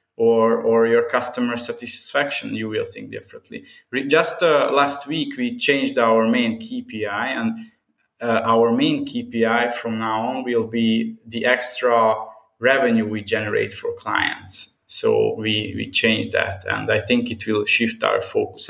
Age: 20-39